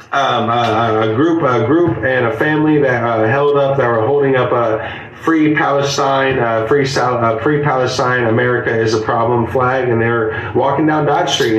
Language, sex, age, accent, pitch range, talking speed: English, male, 30-49, American, 120-155 Hz, 195 wpm